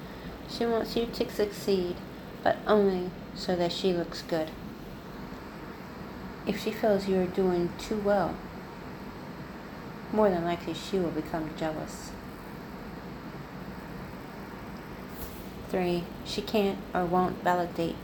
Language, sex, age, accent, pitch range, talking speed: English, female, 40-59, American, 170-195 Hz, 110 wpm